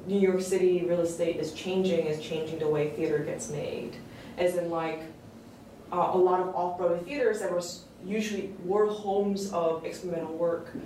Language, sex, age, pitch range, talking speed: English, female, 20-39, 170-200 Hz, 175 wpm